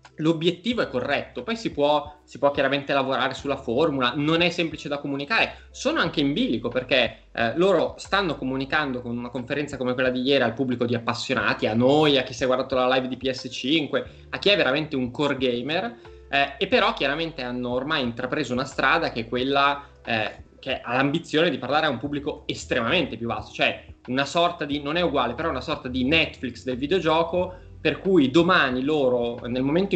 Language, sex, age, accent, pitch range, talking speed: Italian, male, 20-39, native, 130-160 Hz, 200 wpm